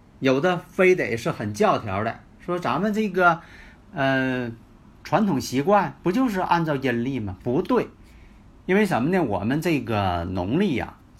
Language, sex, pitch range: Chinese, male, 105-170 Hz